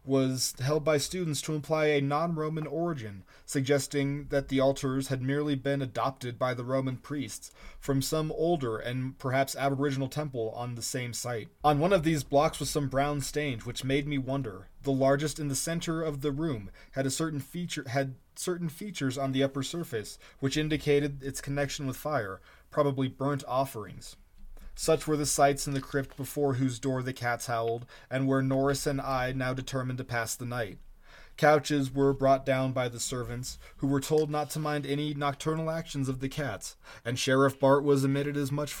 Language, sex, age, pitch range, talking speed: English, male, 20-39, 130-145 Hz, 190 wpm